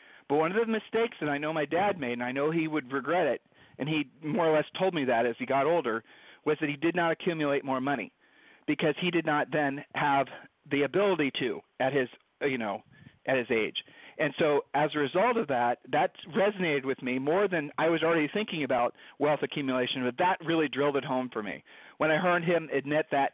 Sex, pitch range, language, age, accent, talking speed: male, 135-170 Hz, English, 40-59, American, 225 wpm